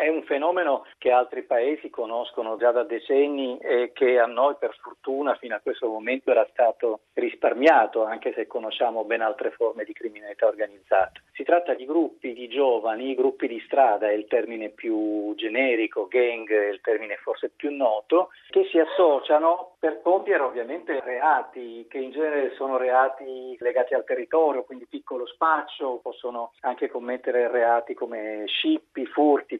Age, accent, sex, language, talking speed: 40-59, native, male, Italian, 160 wpm